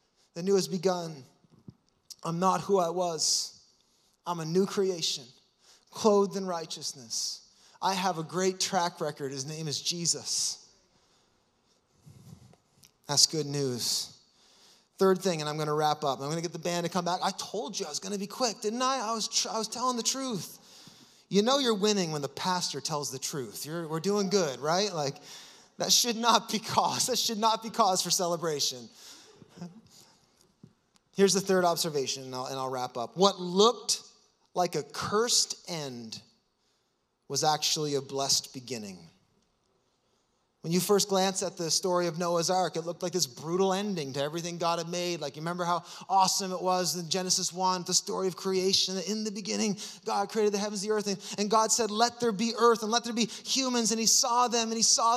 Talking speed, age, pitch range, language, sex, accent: 190 wpm, 30-49, 160-210 Hz, English, male, American